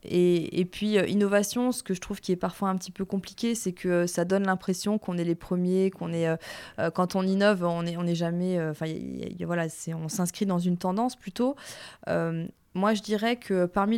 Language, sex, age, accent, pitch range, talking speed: French, female, 20-39, French, 175-215 Hz, 245 wpm